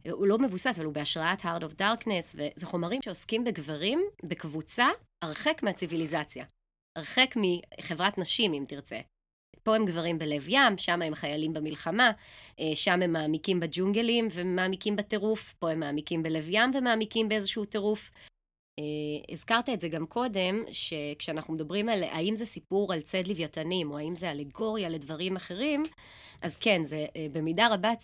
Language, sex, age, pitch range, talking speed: Hebrew, female, 20-39, 160-215 Hz, 150 wpm